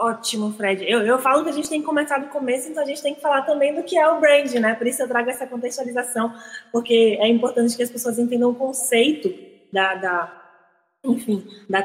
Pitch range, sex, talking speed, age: 215-270 Hz, female, 220 wpm, 20-39